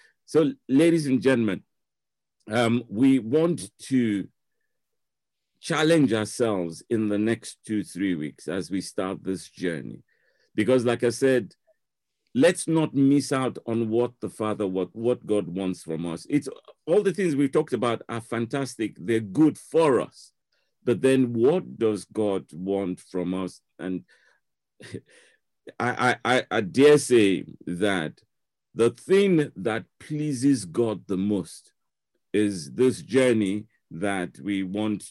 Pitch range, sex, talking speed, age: 95-125 Hz, male, 140 wpm, 50-69